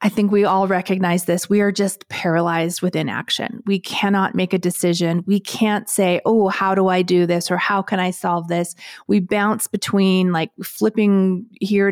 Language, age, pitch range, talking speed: English, 30-49, 180-220 Hz, 190 wpm